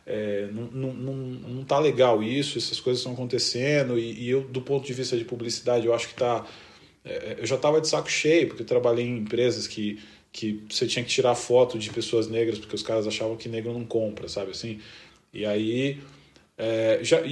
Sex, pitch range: male, 115-155 Hz